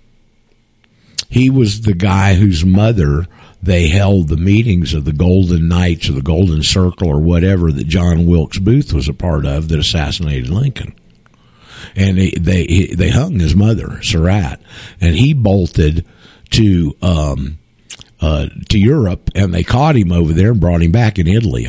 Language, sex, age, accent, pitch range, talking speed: English, male, 50-69, American, 80-115 Hz, 165 wpm